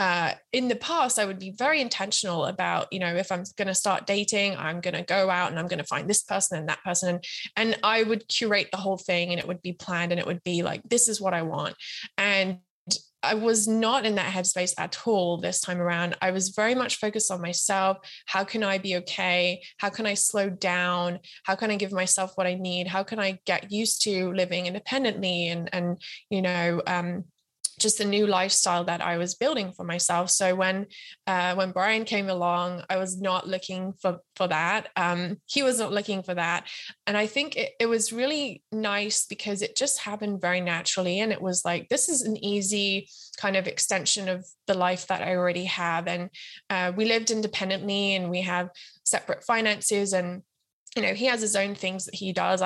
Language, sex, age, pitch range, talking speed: English, female, 20-39, 180-205 Hz, 215 wpm